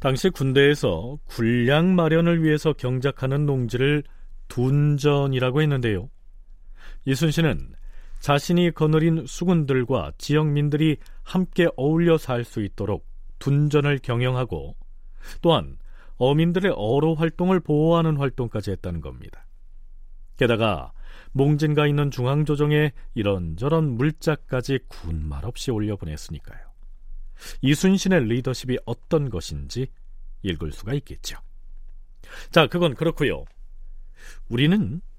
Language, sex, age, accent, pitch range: Korean, male, 40-59, native, 110-155 Hz